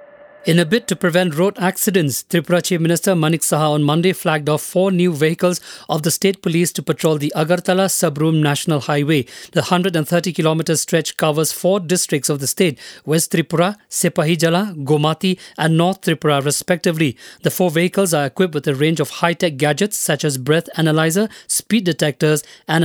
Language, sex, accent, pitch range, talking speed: English, male, Indian, 155-185 Hz, 170 wpm